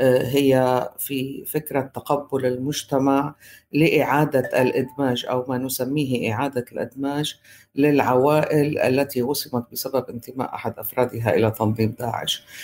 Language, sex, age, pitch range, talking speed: Arabic, female, 50-69, 125-150 Hz, 105 wpm